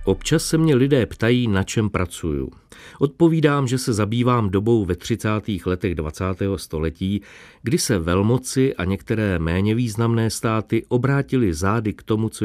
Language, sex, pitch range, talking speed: Czech, male, 90-115 Hz, 150 wpm